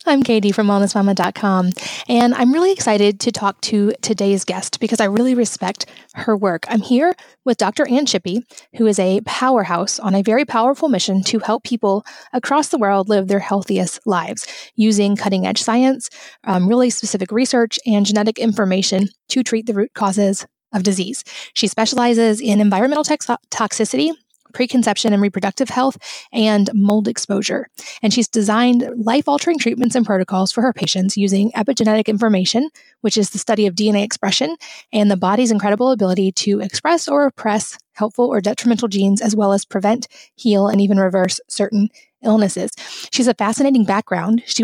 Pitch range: 200-240 Hz